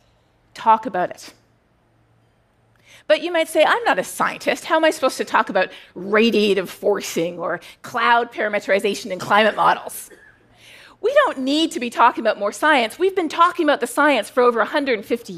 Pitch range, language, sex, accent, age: 235-315 Hz, Korean, female, American, 40-59